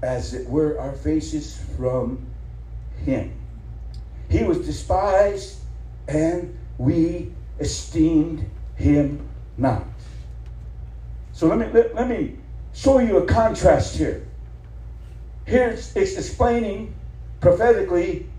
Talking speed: 95 wpm